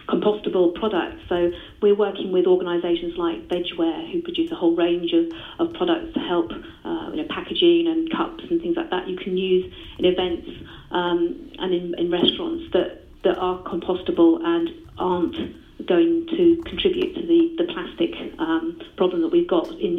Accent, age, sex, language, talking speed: British, 40-59, female, English, 175 wpm